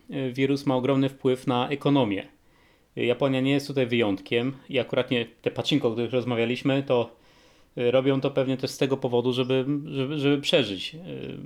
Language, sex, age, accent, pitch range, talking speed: Polish, male, 20-39, native, 120-140 Hz, 155 wpm